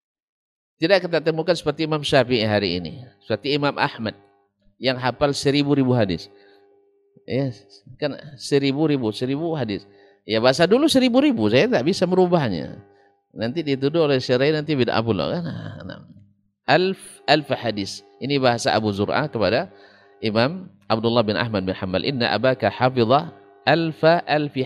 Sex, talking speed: male, 125 wpm